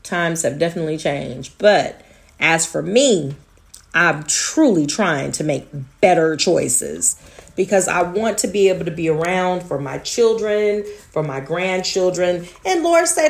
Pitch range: 160-220 Hz